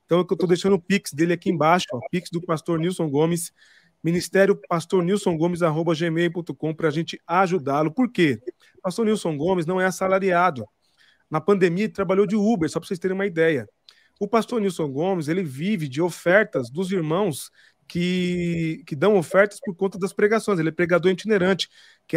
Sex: male